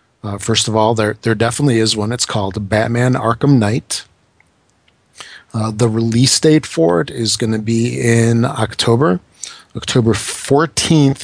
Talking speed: 150 wpm